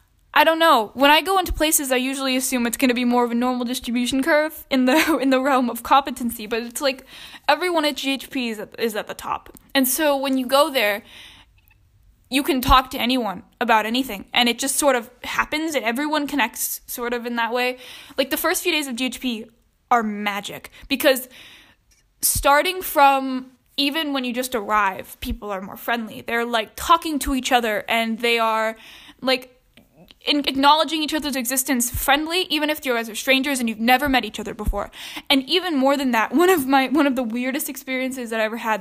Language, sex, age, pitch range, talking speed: English, female, 10-29, 235-285 Hz, 210 wpm